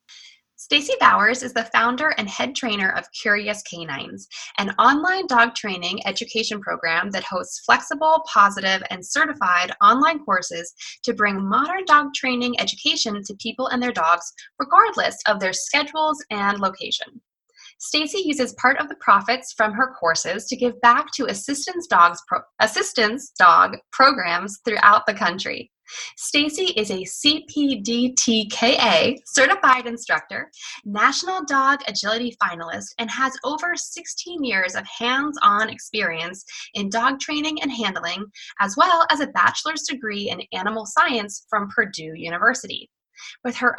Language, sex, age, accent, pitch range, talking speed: English, female, 20-39, American, 205-295 Hz, 135 wpm